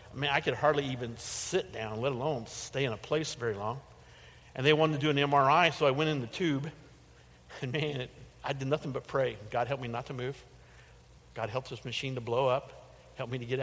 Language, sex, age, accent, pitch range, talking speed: English, male, 50-69, American, 120-165 Hz, 230 wpm